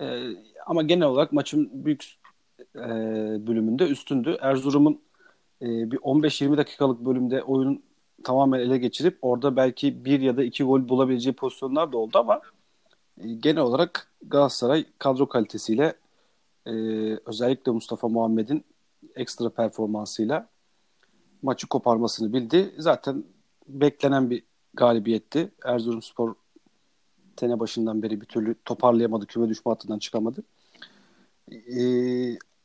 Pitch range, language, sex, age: 115-140 Hz, Turkish, male, 40-59